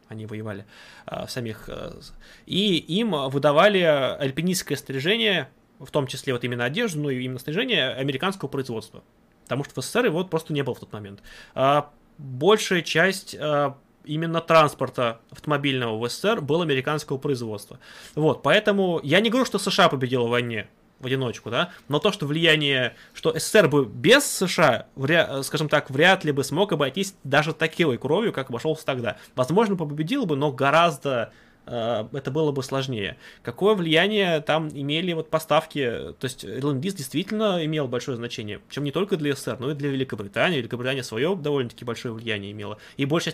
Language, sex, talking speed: Russian, male, 165 wpm